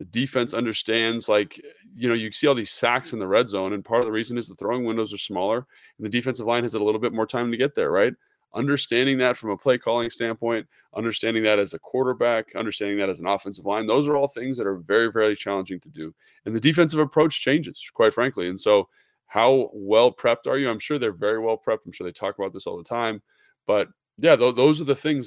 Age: 20-39